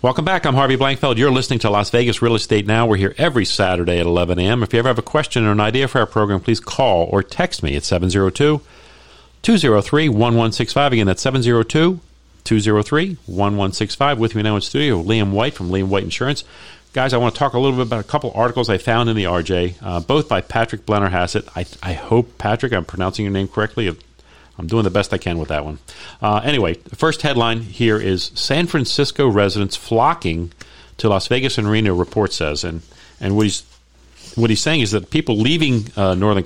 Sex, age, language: male, 50-69, English